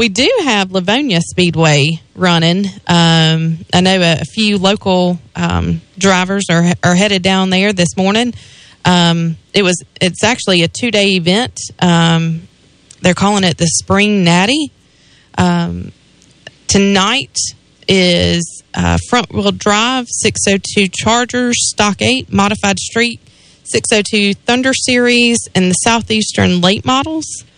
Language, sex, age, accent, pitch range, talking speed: English, female, 20-39, American, 170-220 Hz, 120 wpm